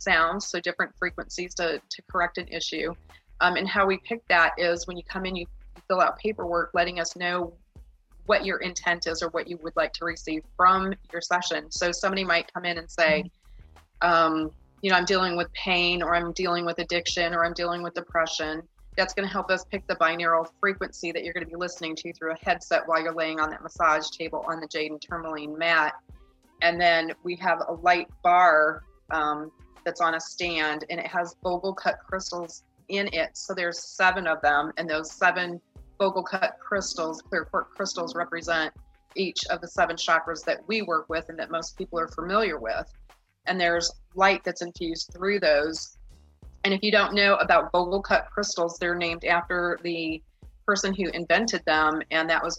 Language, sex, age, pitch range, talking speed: English, female, 30-49, 165-180 Hz, 200 wpm